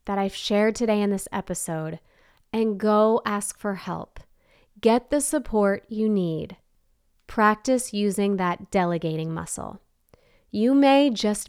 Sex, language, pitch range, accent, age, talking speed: female, English, 185-245 Hz, American, 30-49, 130 wpm